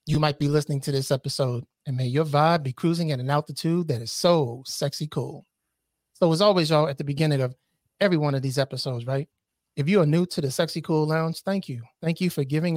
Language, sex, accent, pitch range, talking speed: English, male, American, 140-170 Hz, 235 wpm